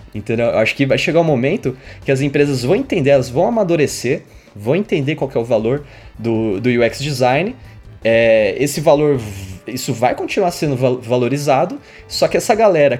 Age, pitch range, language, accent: 20-39, 125-170 Hz, Portuguese, Brazilian